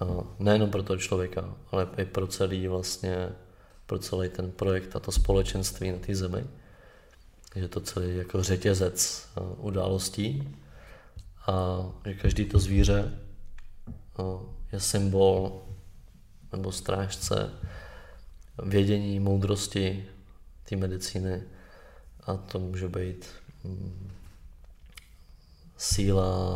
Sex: male